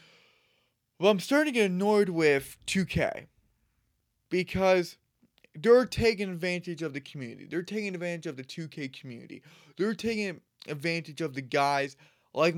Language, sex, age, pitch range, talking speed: English, male, 20-39, 135-175 Hz, 140 wpm